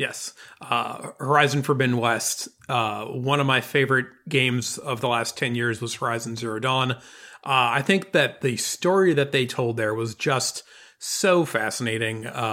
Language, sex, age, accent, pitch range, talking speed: English, male, 30-49, American, 120-145 Hz, 165 wpm